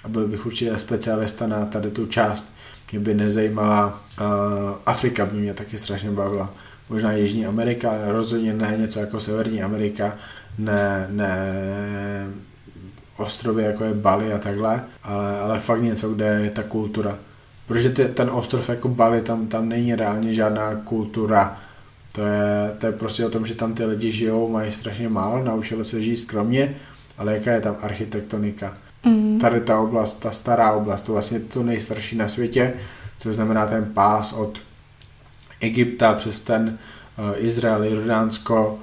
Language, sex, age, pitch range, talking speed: Slovak, male, 20-39, 105-115 Hz, 160 wpm